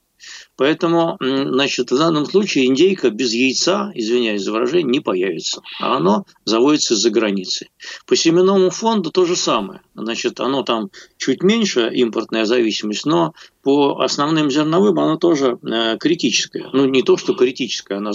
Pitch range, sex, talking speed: 125-190 Hz, male, 150 wpm